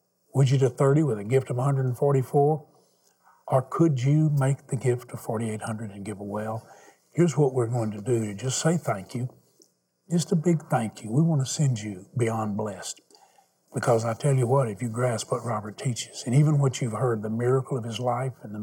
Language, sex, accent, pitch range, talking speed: English, male, American, 110-135 Hz, 215 wpm